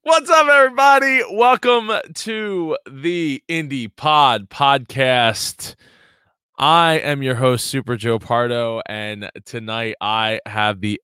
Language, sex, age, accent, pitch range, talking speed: English, male, 20-39, American, 95-120 Hz, 115 wpm